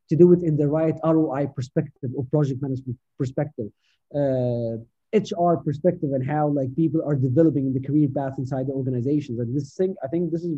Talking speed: 175 wpm